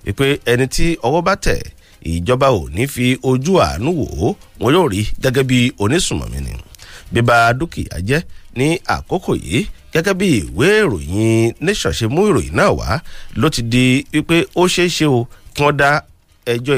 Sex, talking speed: male, 130 wpm